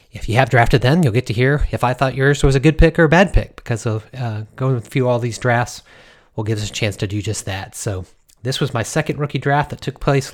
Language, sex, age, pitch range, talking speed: English, male, 30-49, 115-140 Hz, 280 wpm